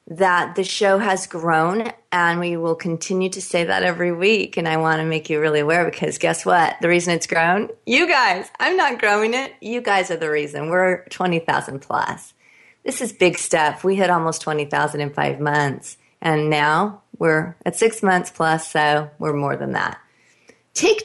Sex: female